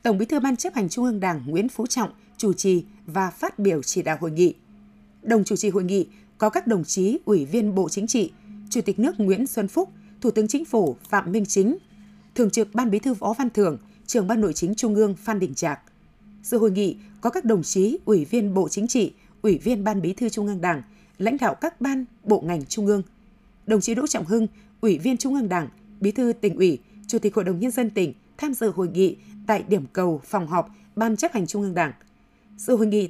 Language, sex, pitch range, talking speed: Vietnamese, female, 190-225 Hz, 240 wpm